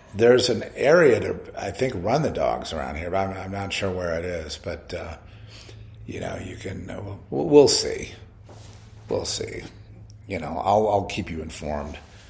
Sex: male